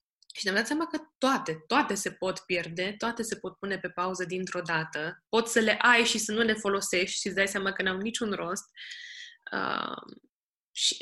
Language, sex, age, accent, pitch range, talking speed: Romanian, female, 20-39, native, 180-225 Hz, 200 wpm